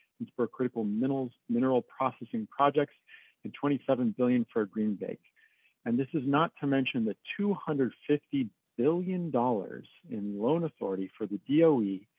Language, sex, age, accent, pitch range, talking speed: English, male, 50-69, American, 110-145 Hz, 140 wpm